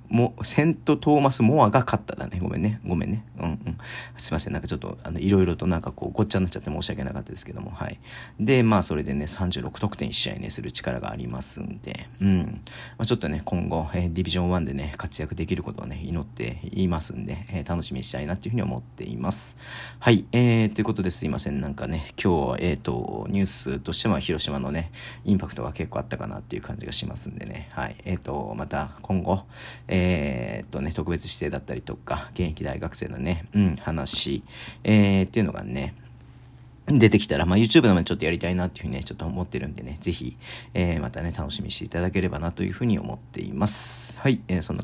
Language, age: Japanese, 40-59